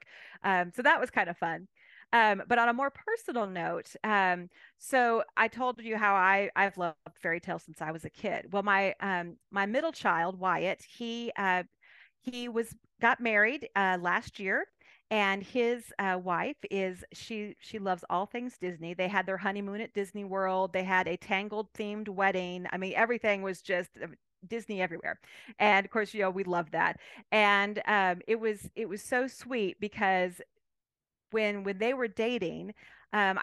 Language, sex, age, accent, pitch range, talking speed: English, female, 40-59, American, 190-230 Hz, 180 wpm